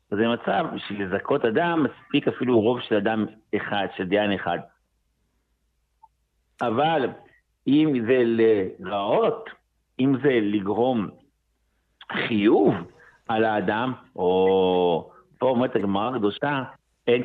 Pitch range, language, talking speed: 100-120 Hz, Hebrew, 105 wpm